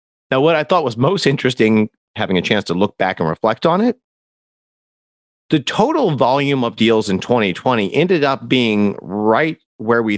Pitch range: 105-135 Hz